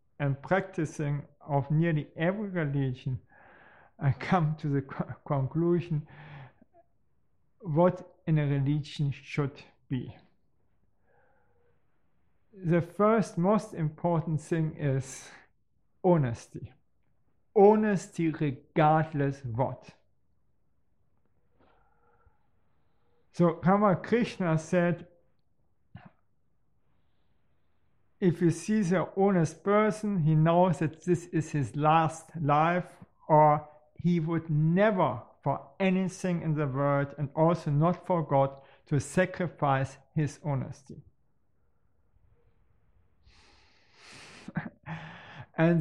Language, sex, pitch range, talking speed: English, male, 140-180 Hz, 85 wpm